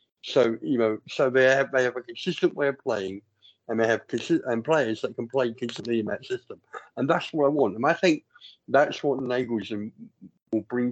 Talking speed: 215 wpm